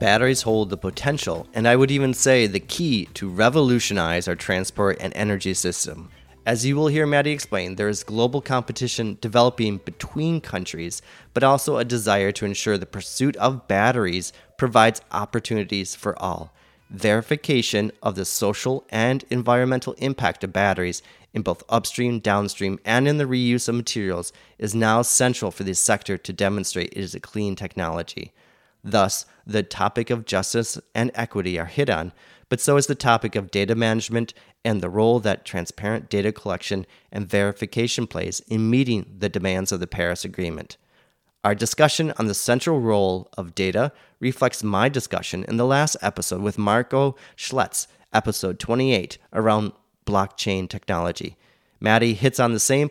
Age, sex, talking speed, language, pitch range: 30-49, male, 160 wpm, English, 100-125 Hz